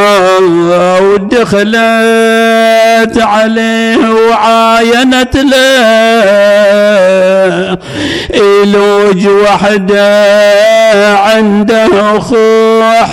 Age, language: 50-69, Arabic